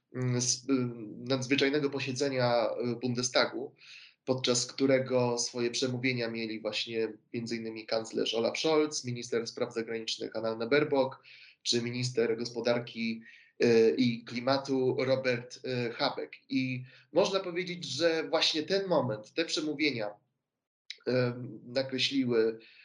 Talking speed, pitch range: 95 wpm, 115-135 Hz